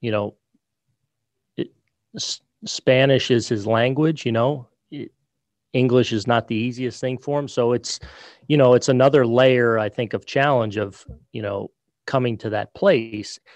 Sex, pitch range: male, 110-125 Hz